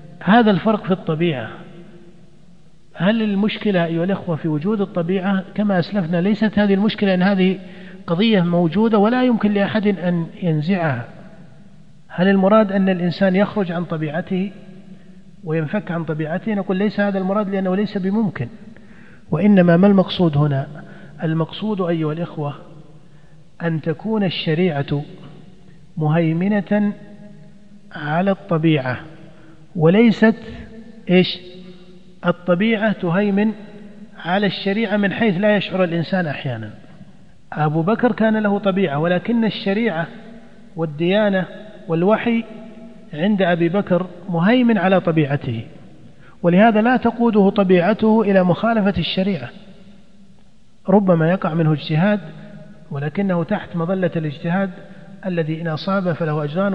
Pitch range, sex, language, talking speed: 170-205 Hz, male, Arabic, 110 wpm